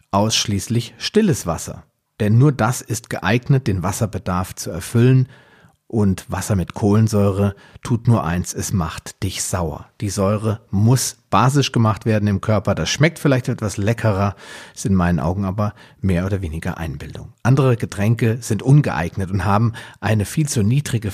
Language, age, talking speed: German, 40-59, 155 wpm